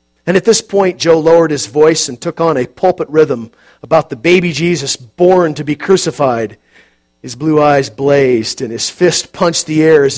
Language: English